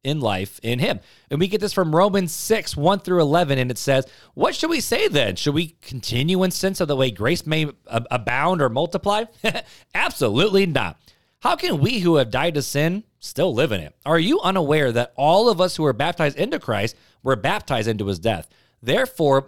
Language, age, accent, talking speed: English, 30-49, American, 205 wpm